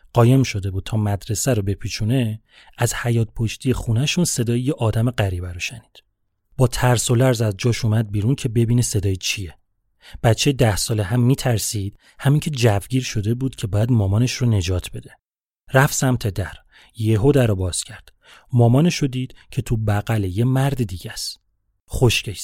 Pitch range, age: 100-125 Hz, 30-49